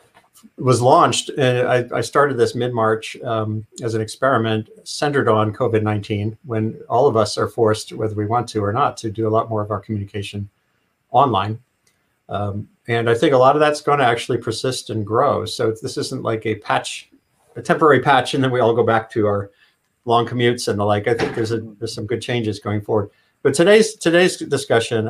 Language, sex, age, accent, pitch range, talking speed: English, male, 50-69, American, 110-120 Hz, 210 wpm